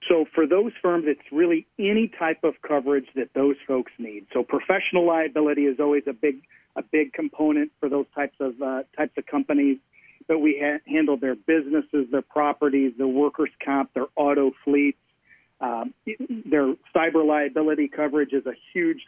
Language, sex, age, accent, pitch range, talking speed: English, male, 40-59, American, 140-160 Hz, 170 wpm